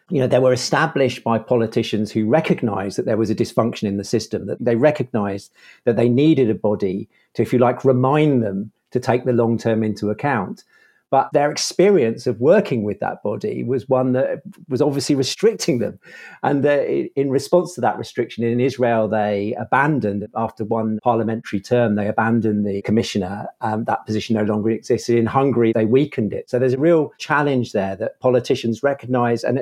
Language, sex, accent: English, male, British